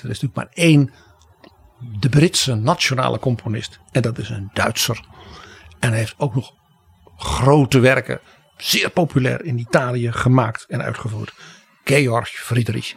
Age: 60-79